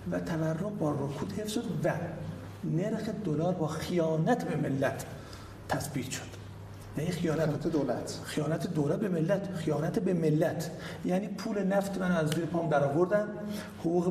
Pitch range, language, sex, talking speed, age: 150-185 Hz, Persian, male, 145 wpm, 50-69